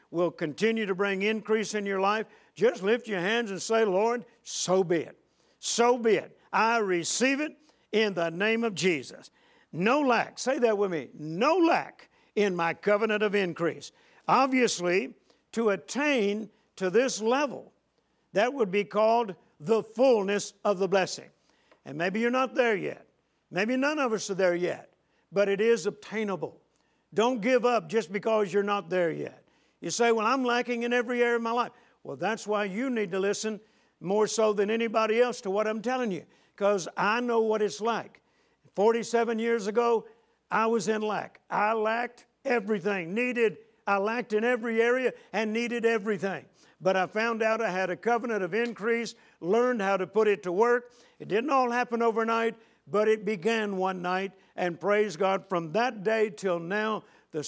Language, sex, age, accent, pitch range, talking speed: English, male, 60-79, American, 195-235 Hz, 180 wpm